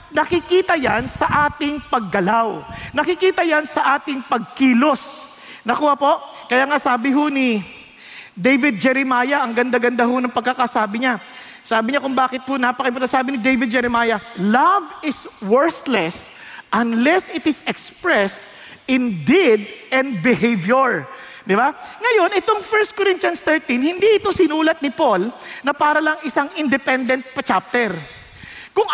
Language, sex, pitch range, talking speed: English, male, 245-325 Hz, 130 wpm